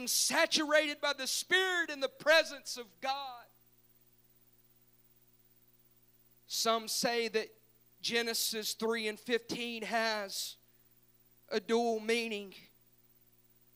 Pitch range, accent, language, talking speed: 205-245 Hz, American, English, 85 wpm